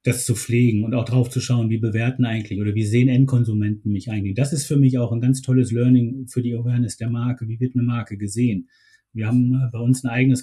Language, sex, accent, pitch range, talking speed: German, male, German, 110-130 Hz, 240 wpm